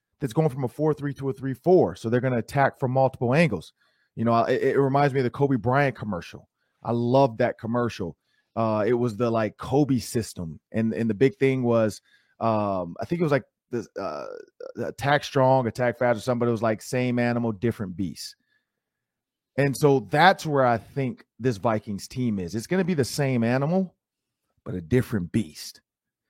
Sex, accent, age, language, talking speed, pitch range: male, American, 30-49, English, 195 wpm, 115-155 Hz